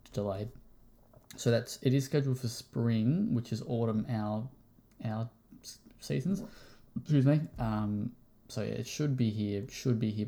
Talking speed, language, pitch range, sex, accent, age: 150 wpm, English, 110-125 Hz, male, Australian, 20-39